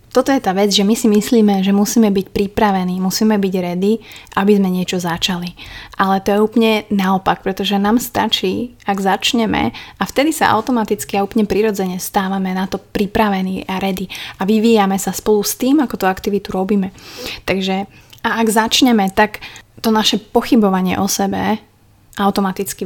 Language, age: Slovak, 30-49